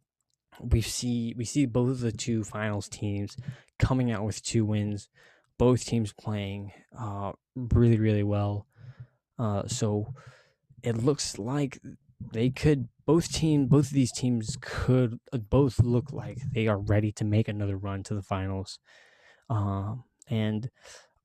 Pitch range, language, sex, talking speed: 105-130 Hz, English, male, 150 wpm